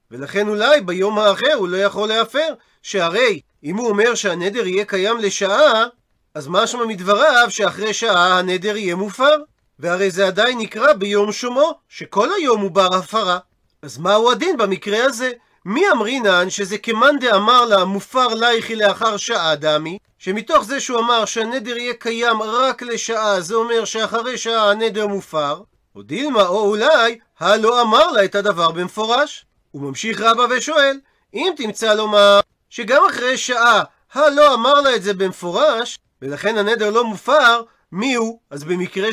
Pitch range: 200-245 Hz